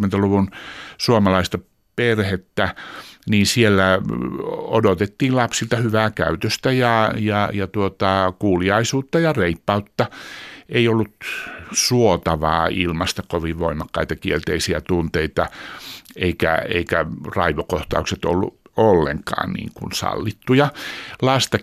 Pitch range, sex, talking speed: 85-110 Hz, male, 85 wpm